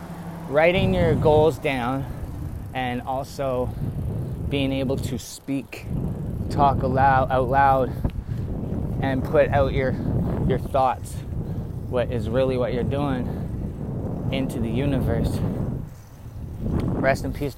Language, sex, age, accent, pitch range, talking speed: English, male, 20-39, American, 110-135 Hz, 105 wpm